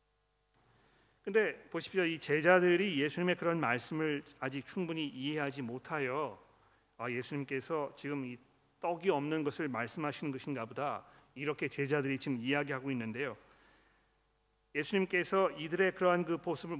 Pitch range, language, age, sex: 140-180 Hz, Korean, 40-59, male